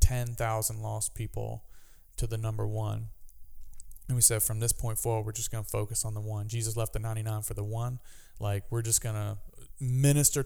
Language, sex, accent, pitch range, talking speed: English, male, American, 110-125 Hz, 200 wpm